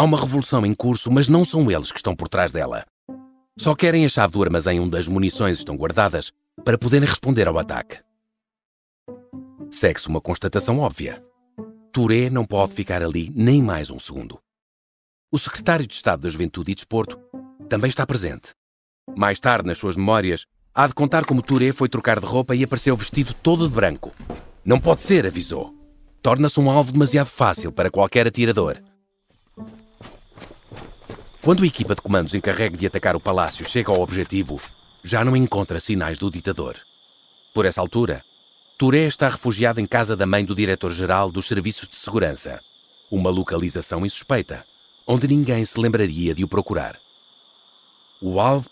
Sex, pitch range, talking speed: male, 90-135 Hz, 165 wpm